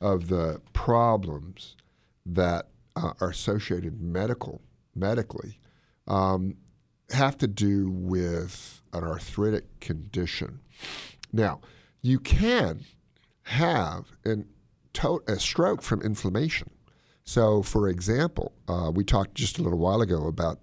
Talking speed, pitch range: 115 wpm, 85-115 Hz